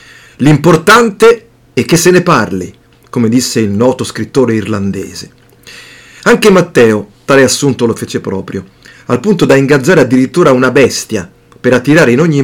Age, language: 40-59, Italian